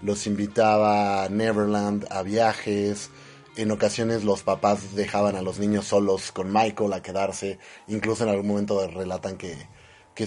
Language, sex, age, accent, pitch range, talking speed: Spanish, male, 30-49, Mexican, 100-120 Hz, 150 wpm